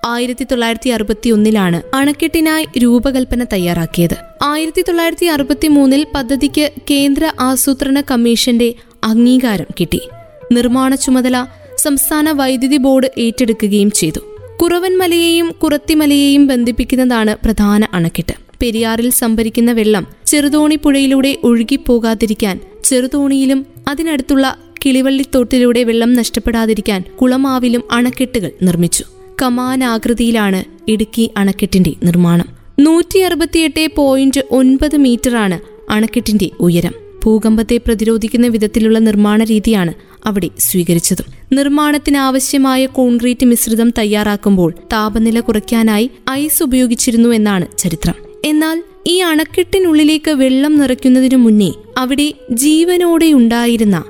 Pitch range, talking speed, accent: 220-285 Hz, 85 wpm, native